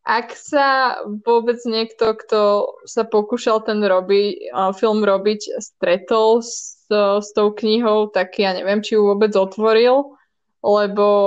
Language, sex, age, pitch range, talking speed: Slovak, female, 20-39, 205-230 Hz, 130 wpm